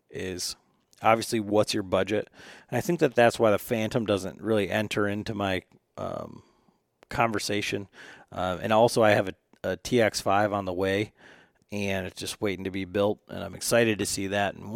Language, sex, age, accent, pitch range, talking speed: English, male, 40-59, American, 100-115 Hz, 185 wpm